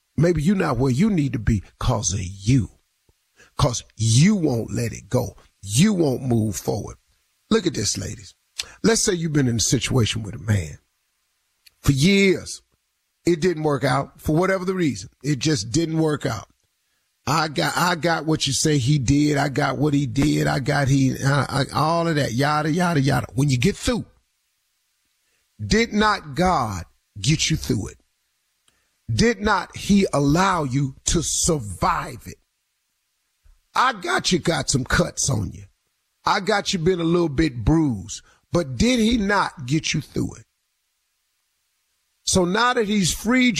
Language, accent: English, American